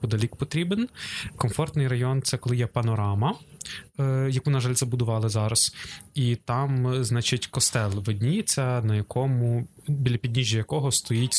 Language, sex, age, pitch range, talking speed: Ukrainian, male, 20-39, 115-140 Hz, 125 wpm